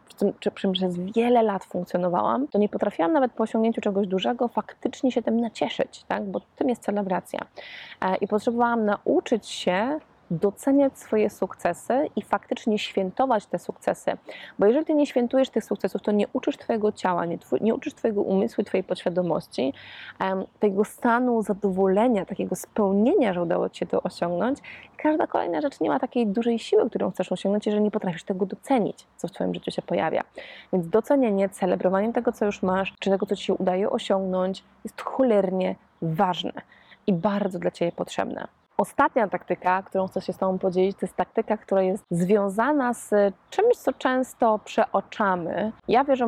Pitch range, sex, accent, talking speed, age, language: 185-230 Hz, female, native, 165 wpm, 20-39, Polish